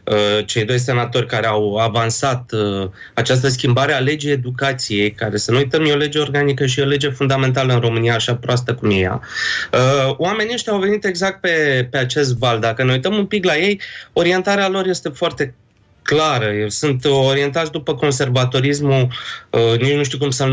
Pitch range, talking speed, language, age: 125-185 Hz, 195 wpm, Romanian, 20-39